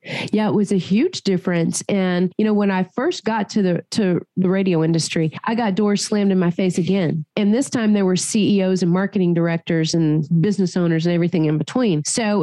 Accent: American